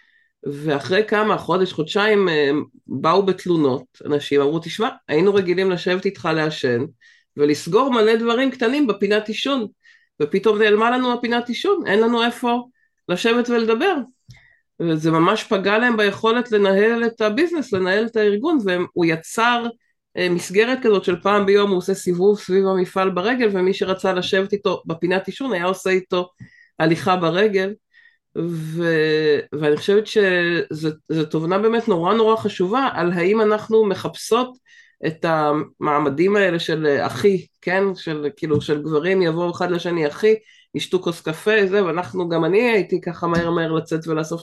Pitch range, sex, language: 160-220 Hz, female, Hebrew